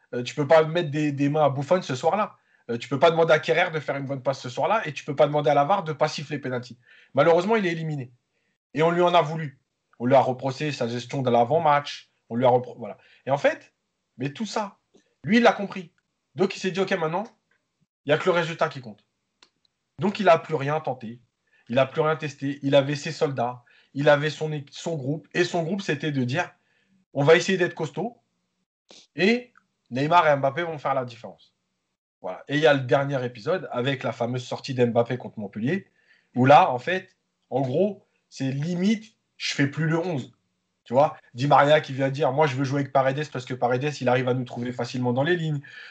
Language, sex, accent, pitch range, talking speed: French, male, French, 130-165 Hz, 235 wpm